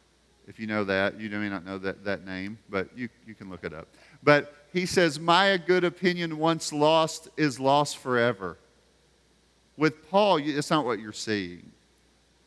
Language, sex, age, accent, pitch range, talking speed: English, male, 40-59, American, 115-145 Hz, 180 wpm